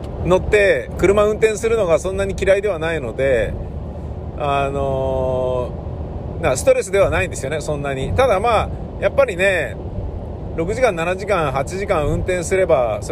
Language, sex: Japanese, male